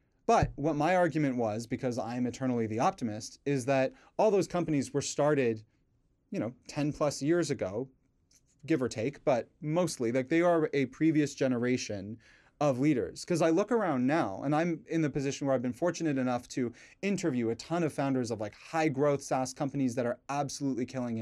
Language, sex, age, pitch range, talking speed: English, male, 30-49, 125-155 Hz, 190 wpm